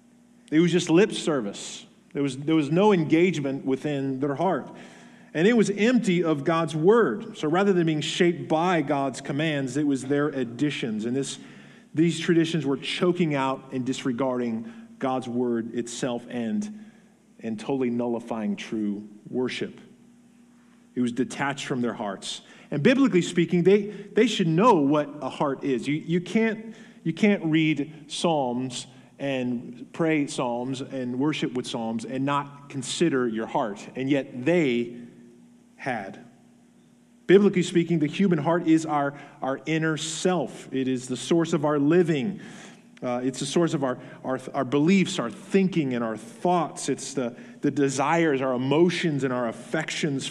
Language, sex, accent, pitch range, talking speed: English, male, American, 135-185 Hz, 155 wpm